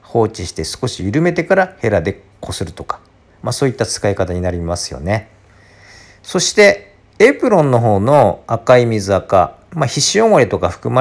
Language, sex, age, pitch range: Japanese, male, 50-69, 90-115 Hz